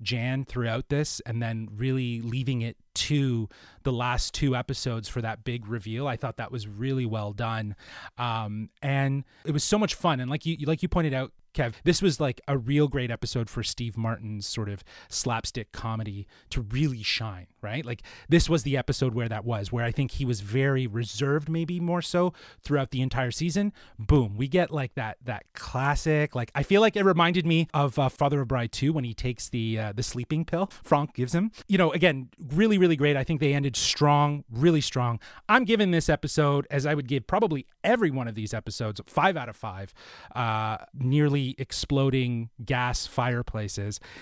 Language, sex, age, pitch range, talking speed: English, male, 30-49, 120-160 Hz, 195 wpm